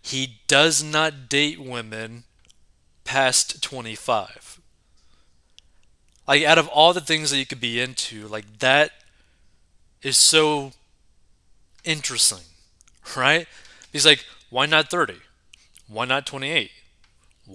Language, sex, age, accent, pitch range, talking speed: English, male, 20-39, American, 105-145 Hz, 110 wpm